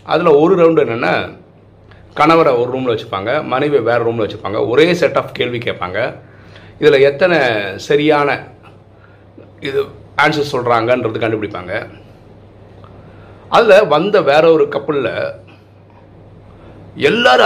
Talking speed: 105 wpm